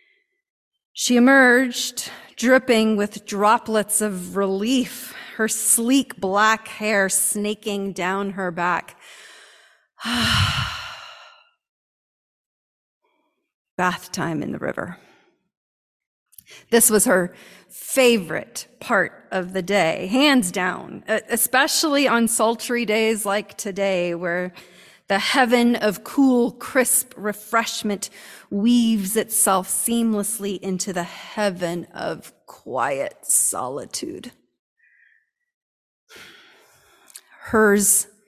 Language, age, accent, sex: English, 30-49, American, female